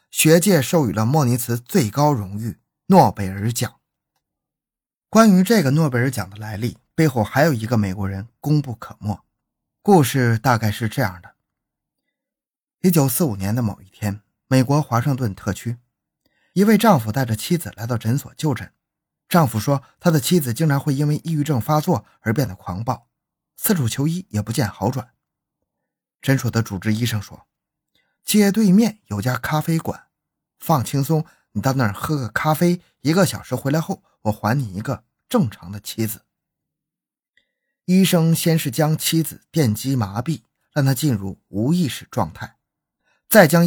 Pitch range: 115-165 Hz